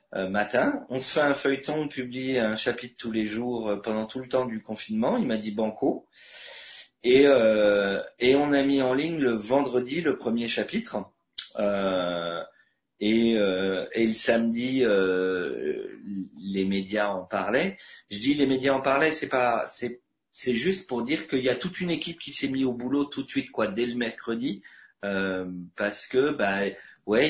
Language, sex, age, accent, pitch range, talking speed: French, male, 40-59, French, 105-140 Hz, 185 wpm